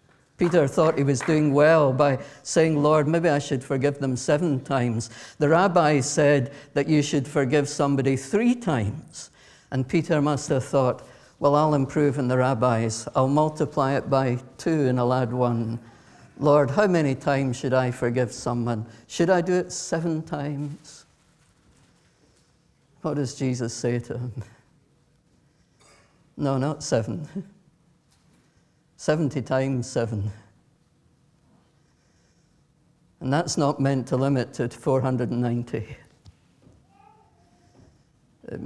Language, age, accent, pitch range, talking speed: English, 50-69, British, 125-150 Hz, 125 wpm